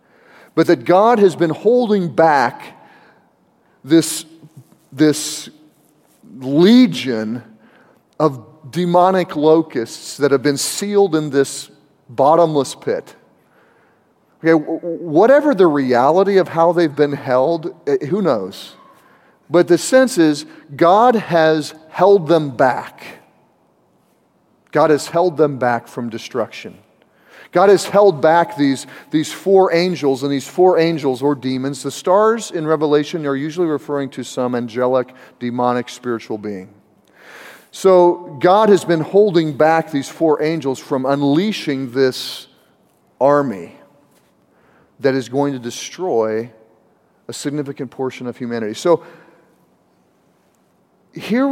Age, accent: 40-59, American